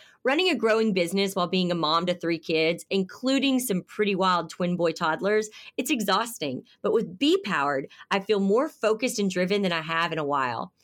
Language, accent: English, American